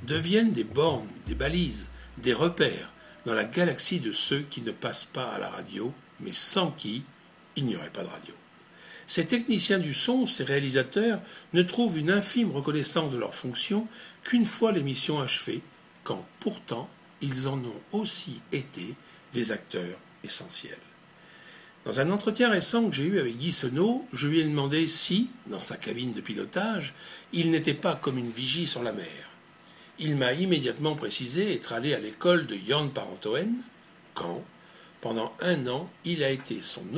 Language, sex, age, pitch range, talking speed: French, male, 60-79, 135-190 Hz, 170 wpm